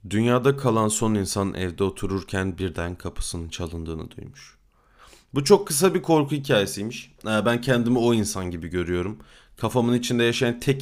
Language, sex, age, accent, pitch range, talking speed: Turkish, male, 30-49, native, 95-135 Hz, 145 wpm